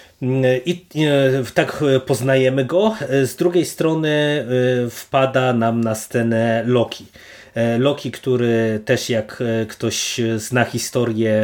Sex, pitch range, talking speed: male, 115-135 Hz, 100 wpm